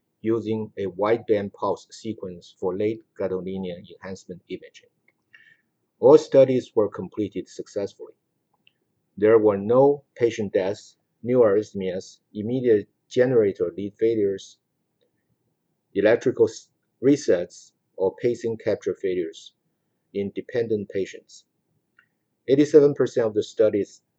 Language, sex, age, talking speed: English, male, 50-69, 95 wpm